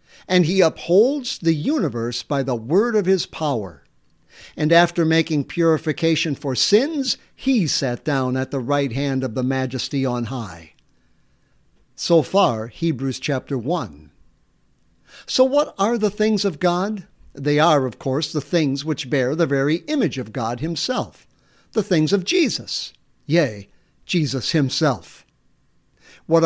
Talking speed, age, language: 145 wpm, 60-79, English